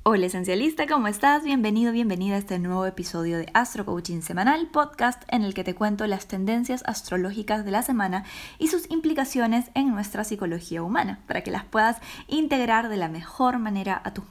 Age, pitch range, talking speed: 20-39, 185-235 Hz, 185 wpm